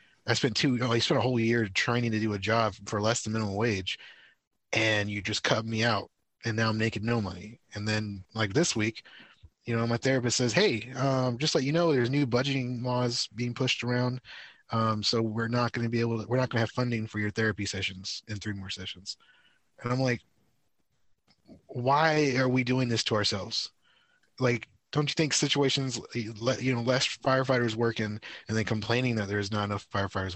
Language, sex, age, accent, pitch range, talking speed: English, male, 20-39, American, 105-125 Hz, 215 wpm